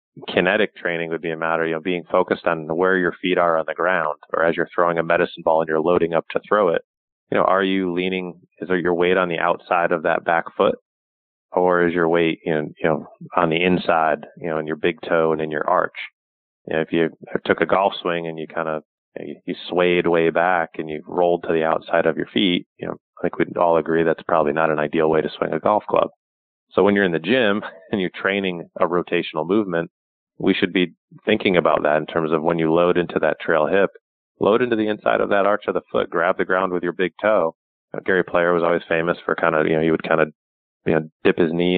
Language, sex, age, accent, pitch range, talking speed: English, male, 30-49, American, 80-90 Hz, 250 wpm